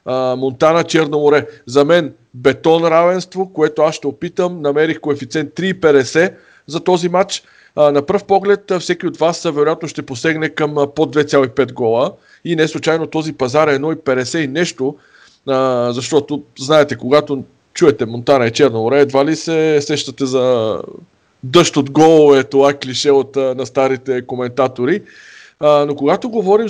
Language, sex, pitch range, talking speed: Bulgarian, male, 135-165 Hz, 140 wpm